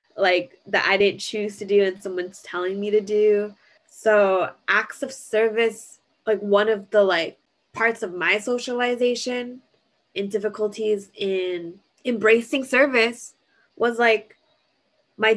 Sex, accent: female, American